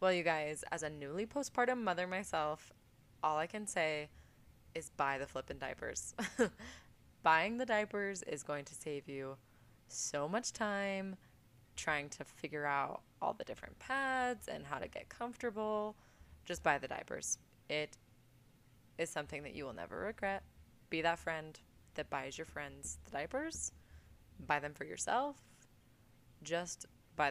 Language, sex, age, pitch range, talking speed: English, female, 20-39, 135-170 Hz, 150 wpm